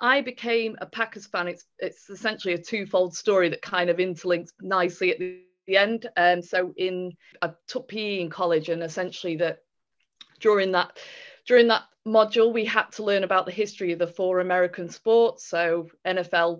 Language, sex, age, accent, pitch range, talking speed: English, female, 20-39, British, 170-195 Hz, 185 wpm